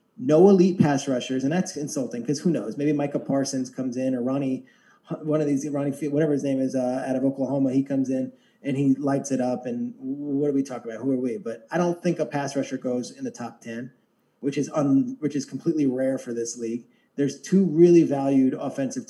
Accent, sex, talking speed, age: American, male, 235 wpm, 30-49